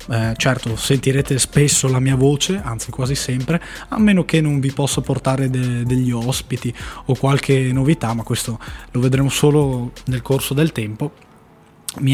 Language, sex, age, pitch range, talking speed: Italian, male, 20-39, 125-150 Hz, 165 wpm